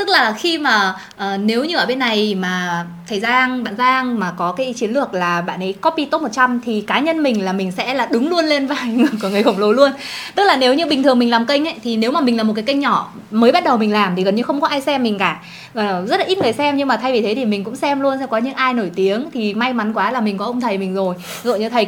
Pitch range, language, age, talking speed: 200-270 Hz, Vietnamese, 20-39, 305 wpm